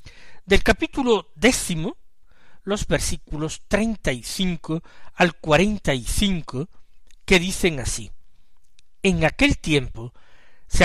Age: 60-79